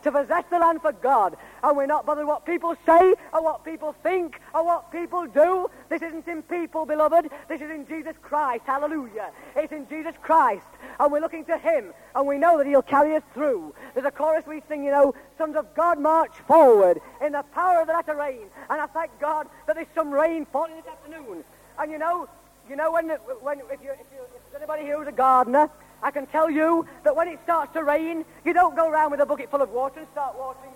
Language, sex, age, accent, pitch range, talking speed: English, female, 40-59, British, 290-330 Hz, 235 wpm